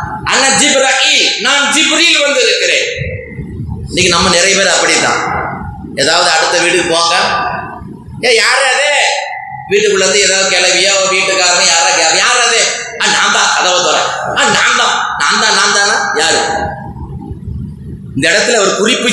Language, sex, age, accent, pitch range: Tamil, male, 20-39, native, 170-270 Hz